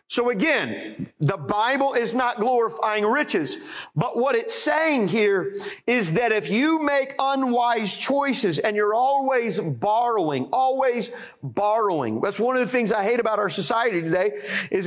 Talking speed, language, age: 155 wpm, English, 40-59